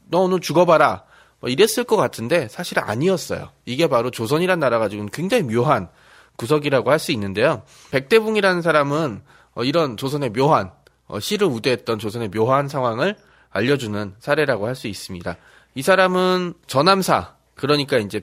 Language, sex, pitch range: Korean, male, 115-185 Hz